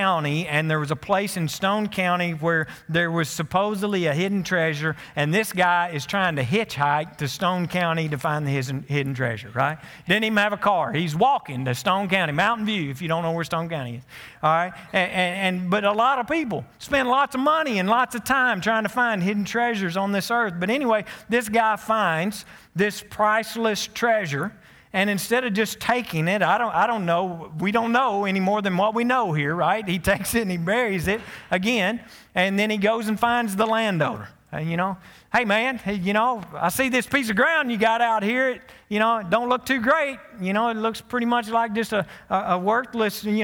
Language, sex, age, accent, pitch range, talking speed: English, male, 50-69, American, 175-230 Hz, 220 wpm